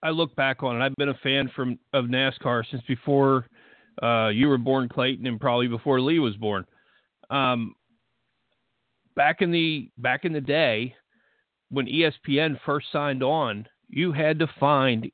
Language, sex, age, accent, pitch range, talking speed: English, male, 50-69, American, 120-155 Hz, 165 wpm